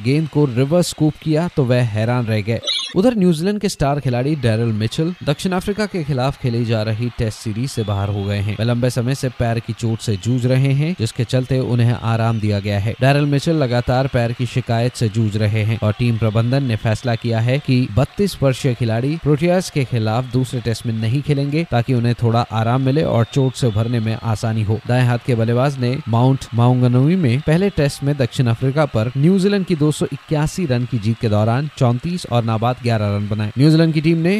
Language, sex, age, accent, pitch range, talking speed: Hindi, male, 20-39, native, 115-145 Hz, 215 wpm